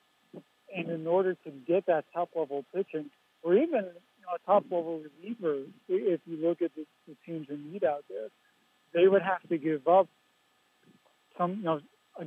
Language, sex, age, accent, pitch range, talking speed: English, male, 60-79, American, 155-180 Hz, 175 wpm